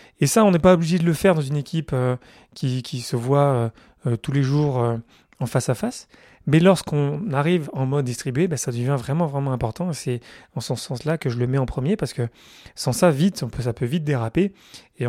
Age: 30-49